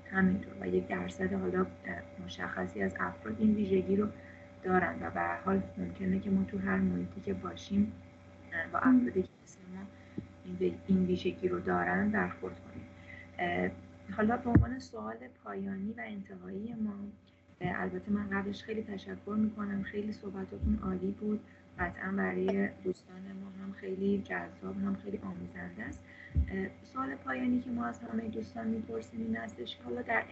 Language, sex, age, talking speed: Persian, female, 30-49, 145 wpm